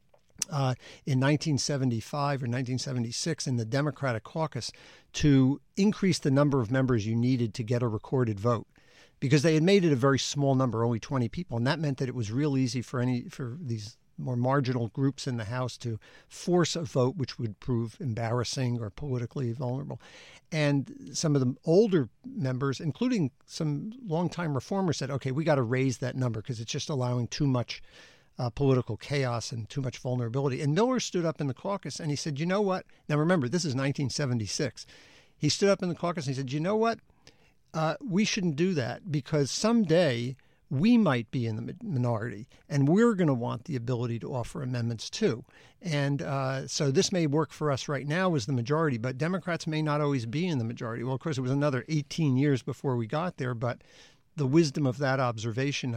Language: English